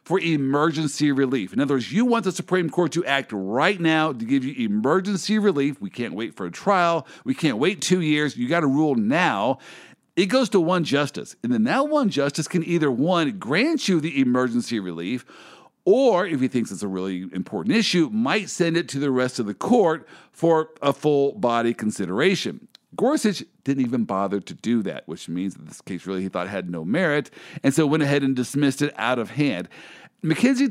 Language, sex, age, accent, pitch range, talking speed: English, male, 50-69, American, 130-195 Hz, 210 wpm